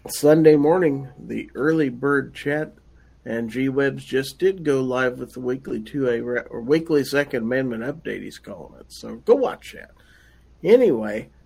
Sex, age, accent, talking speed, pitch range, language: male, 50-69, American, 150 wpm, 110-150 Hz, English